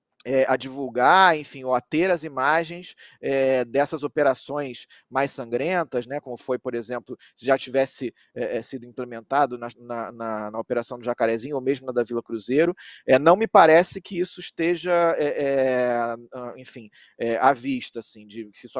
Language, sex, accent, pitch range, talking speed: Portuguese, male, Brazilian, 130-180 Hz, 170 wpm